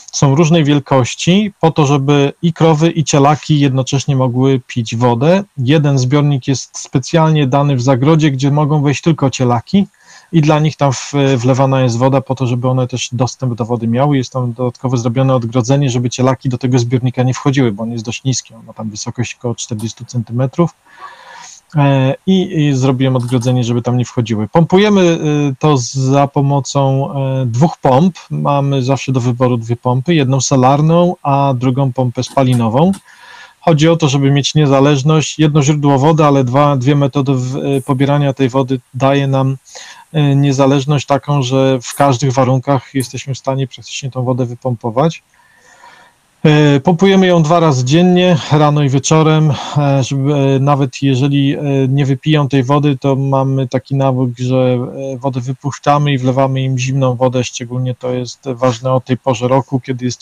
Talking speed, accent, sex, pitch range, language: 160 wpm, native, male, 130-150 Hz, Polish